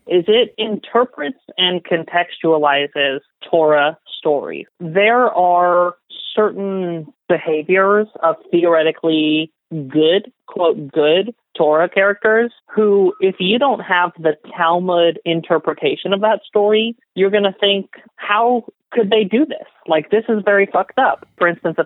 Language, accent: English, American